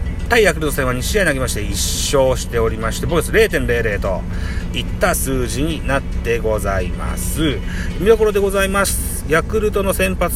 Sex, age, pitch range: male, 40-59, 100-170 Hz